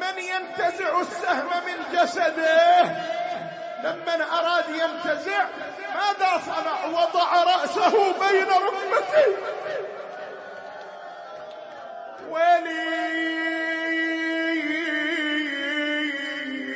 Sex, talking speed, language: male, 55 wpm, Arabic